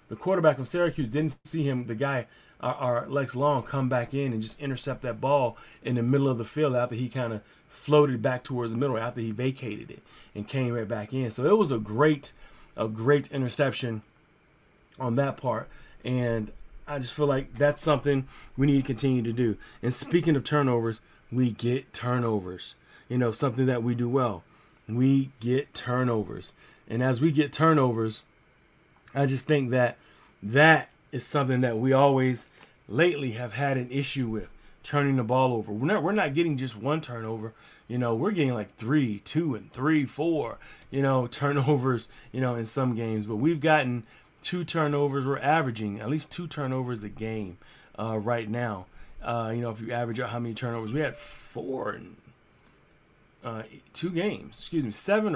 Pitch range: 115-145 Hz